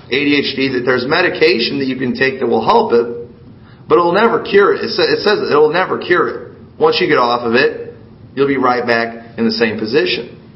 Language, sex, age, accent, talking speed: English, male, 40-59, American, 210 wpm